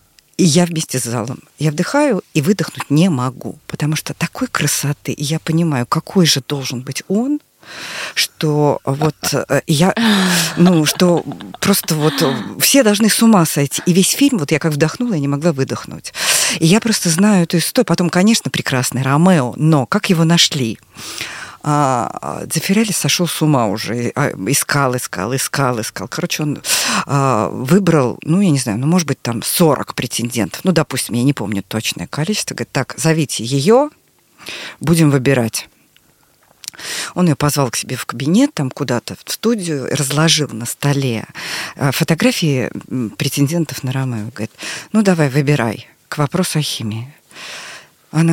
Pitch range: 135-180 Hz